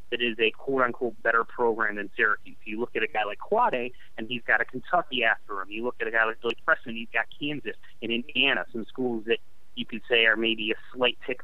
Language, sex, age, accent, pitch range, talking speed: English, male, 30-49, American, 115-135 Hz, 240 wpm